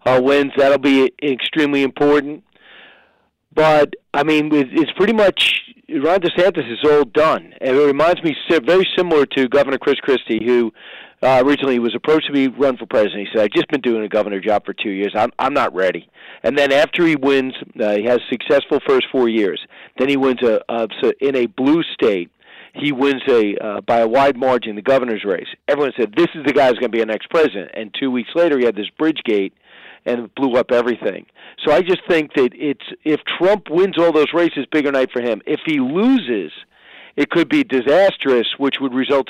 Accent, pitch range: American, 120-155 Hz